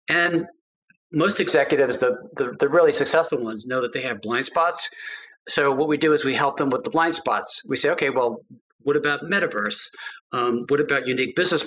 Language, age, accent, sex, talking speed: English, 50-69, American, male, 200 wpm